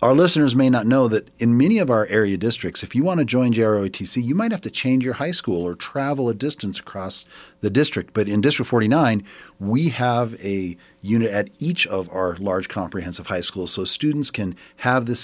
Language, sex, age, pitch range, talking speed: English, male, 40-59, 95-135 Hz, 215 wpm